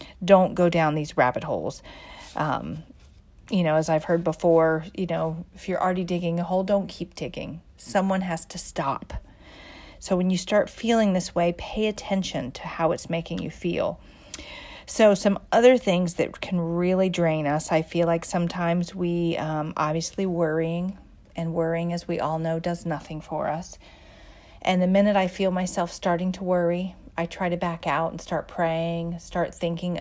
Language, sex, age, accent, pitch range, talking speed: English, female, 40-59, American, 165-190 Hz, 180 wpm